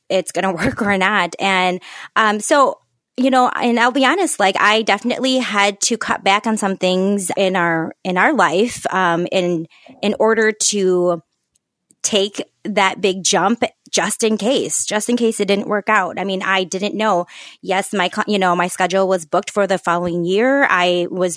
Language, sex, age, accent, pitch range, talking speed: English, female, 20-39, American, 175-205 Hz, 190 wpm